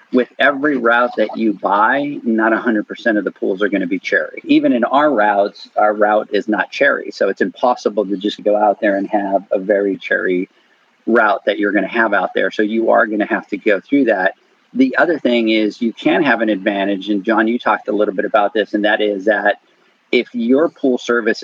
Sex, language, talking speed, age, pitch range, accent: male, English, 230 wpm, 40-59, 105-120 Hz, American